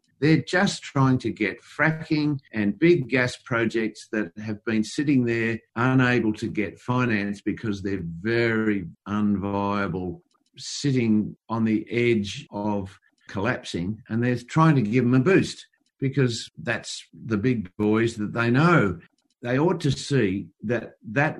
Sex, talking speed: male, 145 wpm